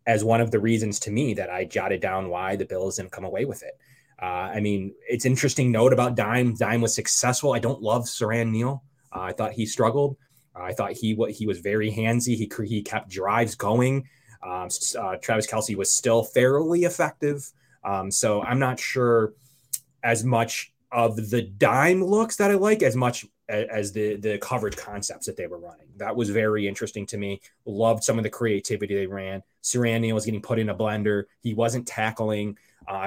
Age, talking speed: 20-39, 200 wpm